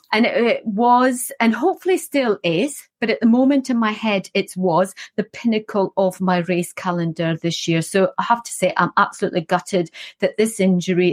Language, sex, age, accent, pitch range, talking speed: English, female, 40-59, British, 175-230 Hz, 190 wpm